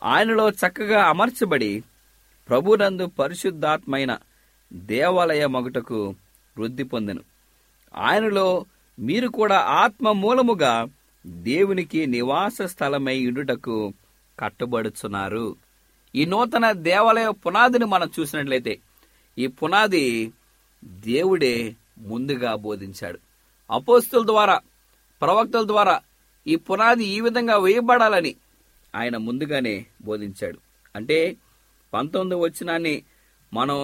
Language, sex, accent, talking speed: English, male, Indian, 70 wpm